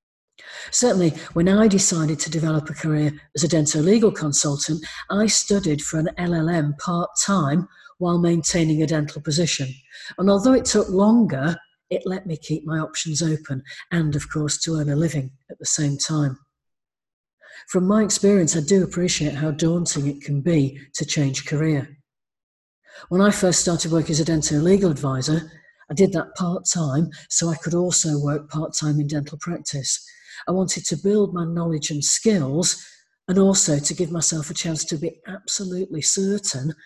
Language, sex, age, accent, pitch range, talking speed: English, female, 50-69, British, 145-175 Hz, 170 wpm